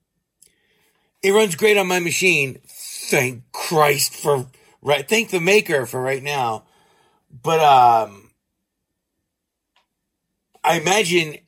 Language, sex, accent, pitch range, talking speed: English, male, American, 135-220 Hz, 105 wpm